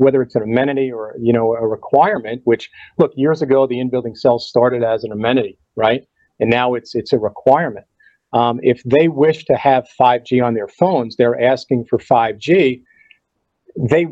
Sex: male